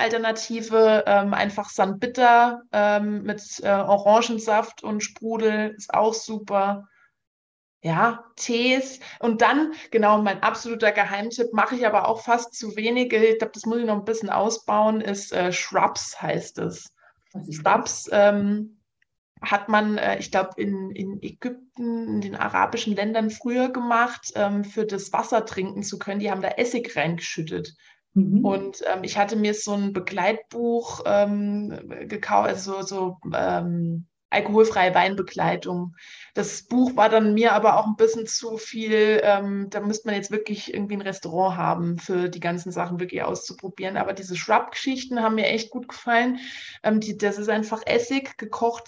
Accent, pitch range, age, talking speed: German, 200-235 Hz, 20-39, 160 wpm